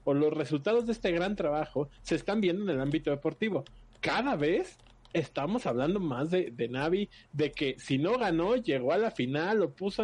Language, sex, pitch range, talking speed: Spanish, male, 130-195 Hz, 195 wpm